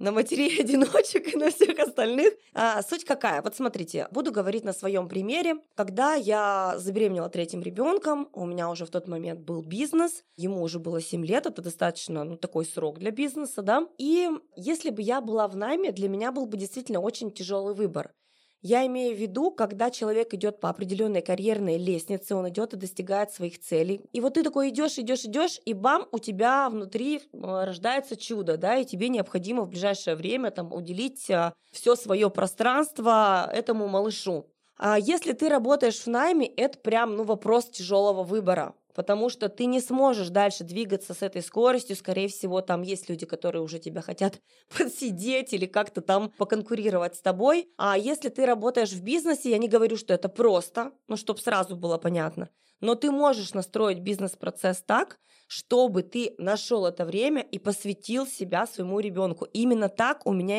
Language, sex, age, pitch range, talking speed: Russian, female, 20-39, 190-250 Hz, 175 wpm